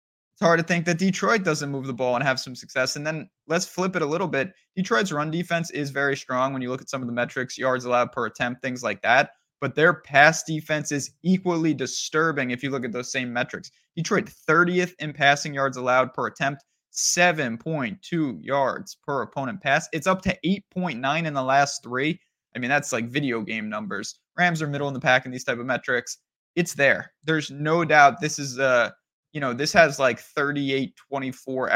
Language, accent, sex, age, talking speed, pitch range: English, American, male, 20-39, 210 wpm, 125-155 Hz